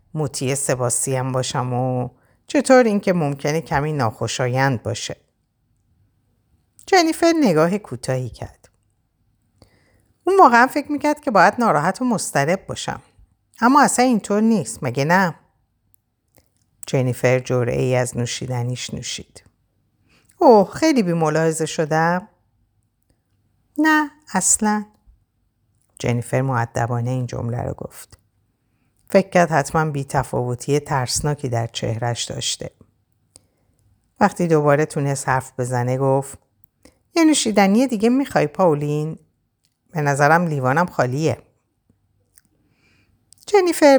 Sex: female